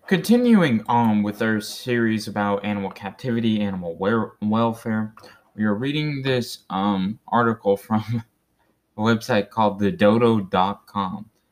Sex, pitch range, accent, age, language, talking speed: male, 110-150 Hz, American, 20-39, English, 110 wpm